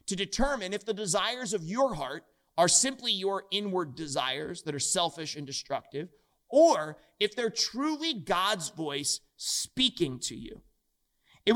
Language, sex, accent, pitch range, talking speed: English, male, American, 165-225 Hz, 145 wpm